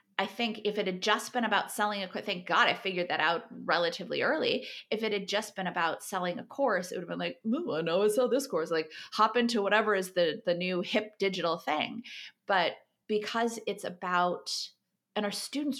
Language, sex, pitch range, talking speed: English, female, 190-230 Hz, 220 wpm